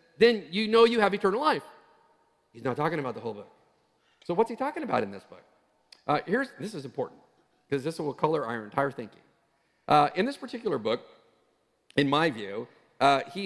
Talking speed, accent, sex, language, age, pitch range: 195 wpm, American, male, English, 50-69, 135-190 Hz